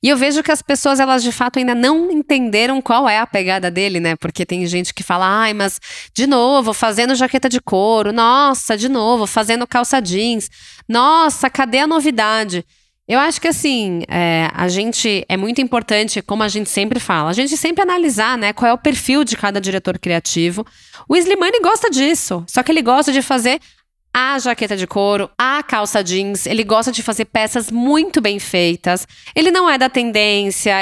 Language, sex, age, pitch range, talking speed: Portuguese, female, 20-39, 190-260 Hz, 190 wpm